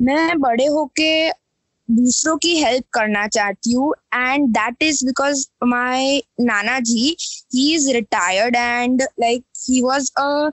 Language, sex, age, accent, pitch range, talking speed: Hindi, female, 20-39, native, 240-290 Hz, 135 wpm